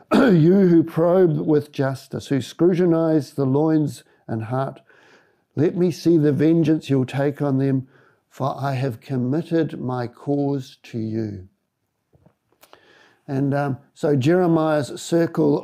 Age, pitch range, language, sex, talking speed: 50-69, 125-155 Hz, English, male, 125 wpm